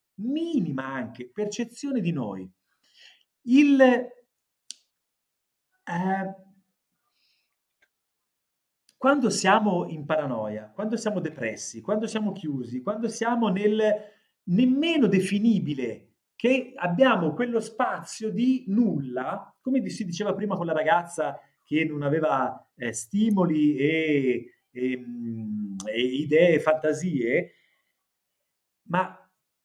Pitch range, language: 155-250 Hz, Italian